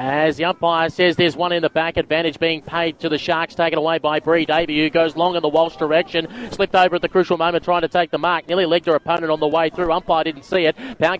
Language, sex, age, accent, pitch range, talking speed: English, male, 30-49, Australian, 170-200 Hz, 275 wpm